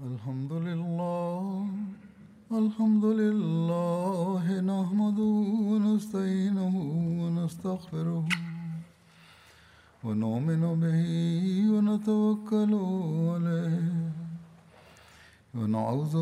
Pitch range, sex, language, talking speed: 165-210 Hz, male, Swahili, 45 wpm